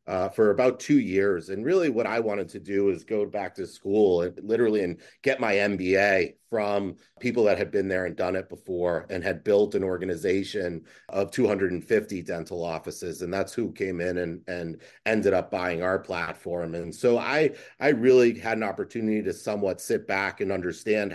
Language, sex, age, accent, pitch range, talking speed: English, male, 30-49, American, 95-115 Hz, 195 wpm